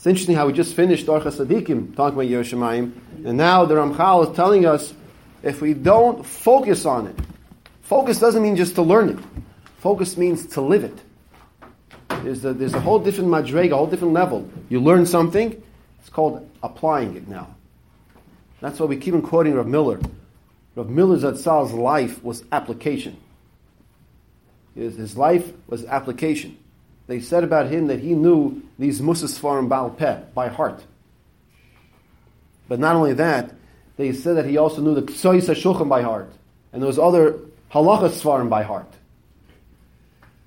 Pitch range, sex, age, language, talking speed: 140-185 Hz, male, 40-59, English, 155 wpm